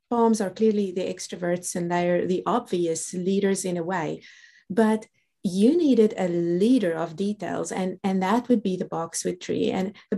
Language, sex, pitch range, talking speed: English, female, 185-230 Hz, 175 wpm